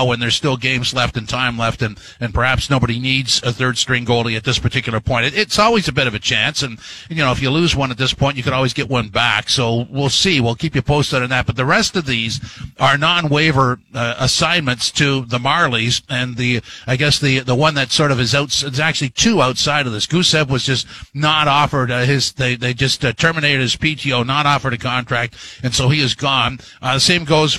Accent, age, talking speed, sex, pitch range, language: American, 50-69, 240 wpm, male, 125-150 Hz, English